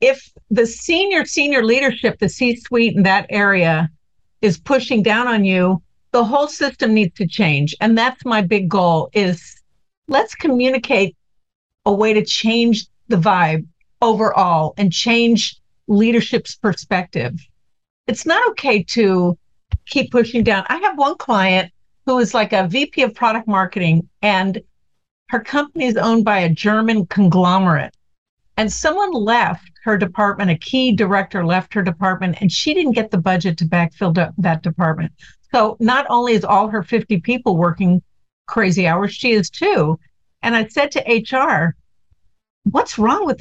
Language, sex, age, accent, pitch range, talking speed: English, female, 50-69, American, 185-240 Hz, 155 wpm